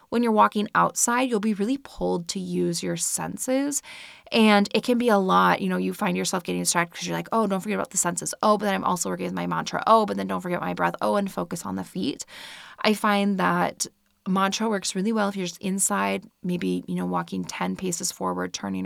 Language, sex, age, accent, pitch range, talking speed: English, female, 20-39, American, 160-205 Hz, 240 wpm